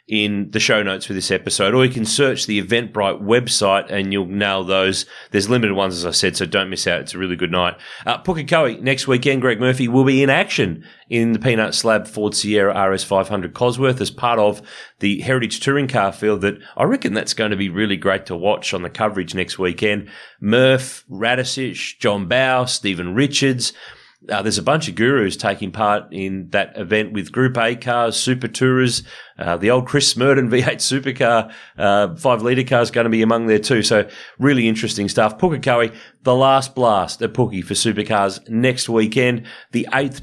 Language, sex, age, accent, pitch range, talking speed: English, male, 30-49, Australian, 100-130 Hz, 195 wpm